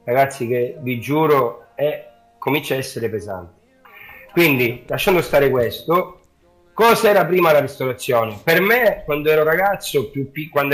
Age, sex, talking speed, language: 40-59, male, 140 wpm, Italian